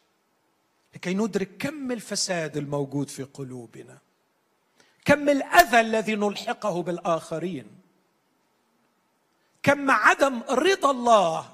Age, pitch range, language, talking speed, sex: 40-59, 170-235 Hz, Arabic, 85 wpm, male